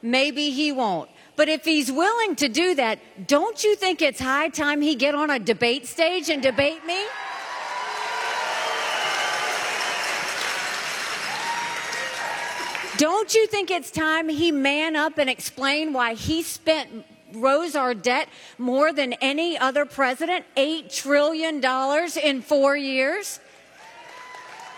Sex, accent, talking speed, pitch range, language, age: female, American, 120 wpm, 260-320 Hz, English, 40-59